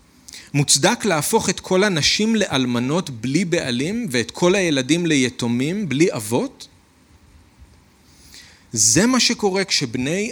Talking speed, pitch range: 105 wpm, 115-185 Hz